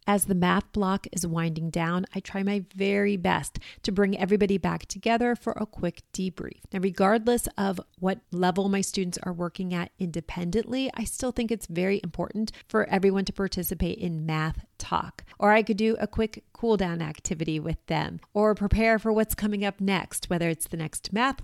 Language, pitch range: English, 175-215 Hz